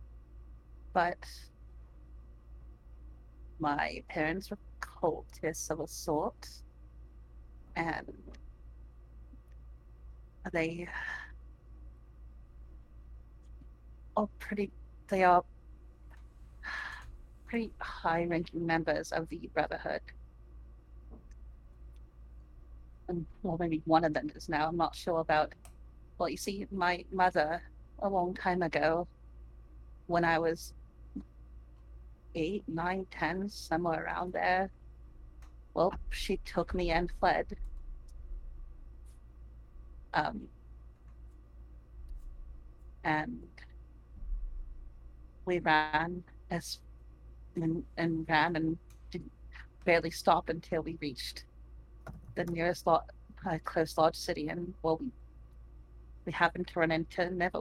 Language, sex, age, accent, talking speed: English, female, 40-59, American, 90 wpm